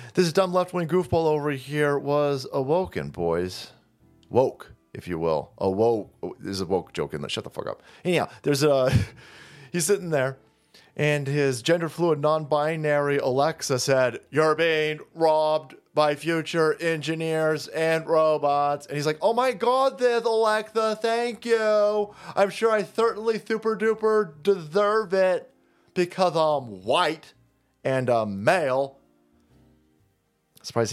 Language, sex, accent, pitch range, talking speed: English, male, American, 125-180 Hz, 130 wpm